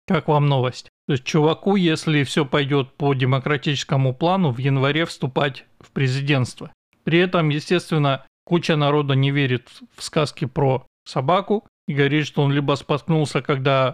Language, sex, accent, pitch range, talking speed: Russian, male, native, 145-170 Hz, 150 wpm